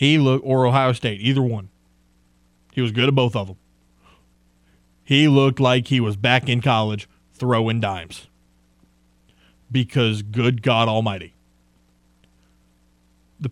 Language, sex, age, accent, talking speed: English, male, 20-39, American, 130 wpm